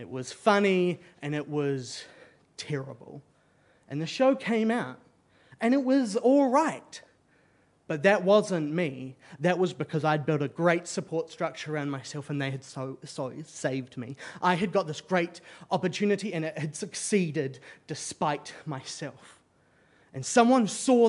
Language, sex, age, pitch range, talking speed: English, male, 30-49, 150-230 Hz, 155 wpm